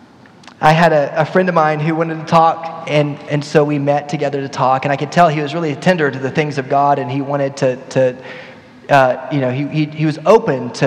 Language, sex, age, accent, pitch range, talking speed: English, male, 30-49, American, 125-150 Hz, 260 wpm